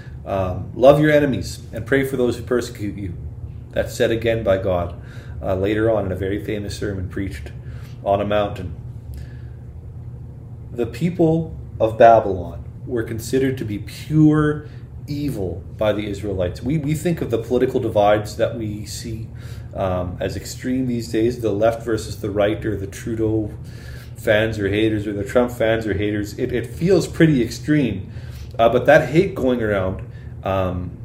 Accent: American